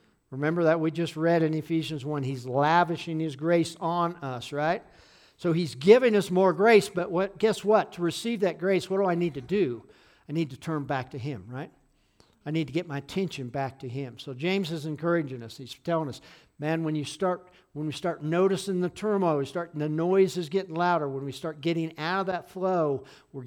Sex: male